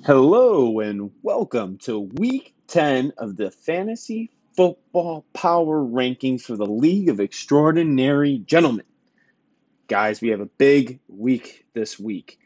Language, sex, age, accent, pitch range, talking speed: English, male, 20-39, American, 115-160 Hz, 125 wpm